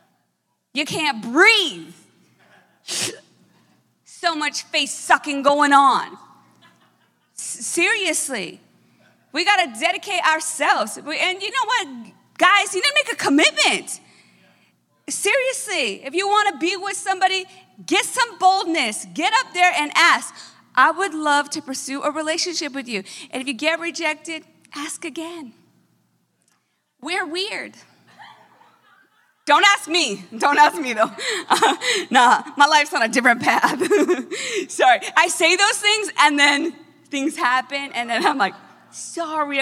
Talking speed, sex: 135 wpm, female